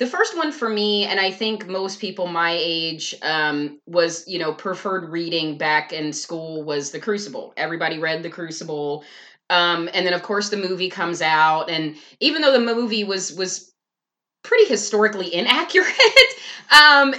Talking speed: 170 wpm